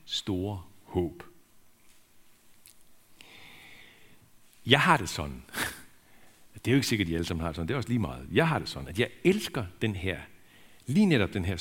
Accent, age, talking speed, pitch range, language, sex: native, 60-79, 180 wpm, 95-125 Hz, Danish, male